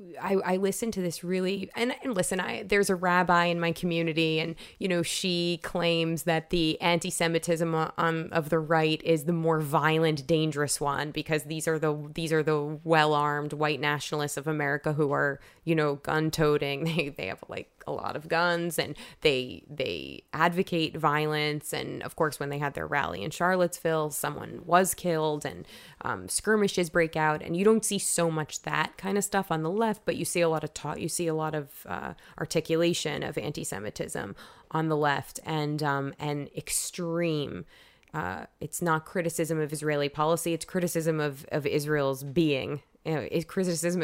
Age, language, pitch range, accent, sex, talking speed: 20-39, English, 155-175 Hz, American, female, 185 wpm